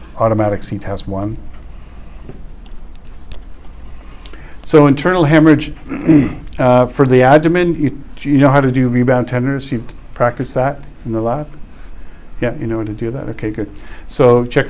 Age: 50-69